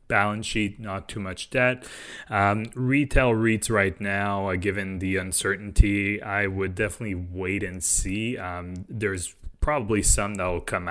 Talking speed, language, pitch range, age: 155 wpm, English, 95-115 Hz, 20-39